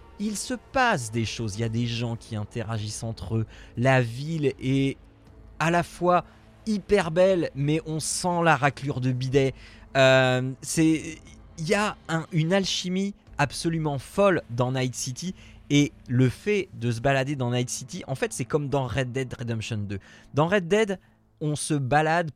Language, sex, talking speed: French, male, 175 wpm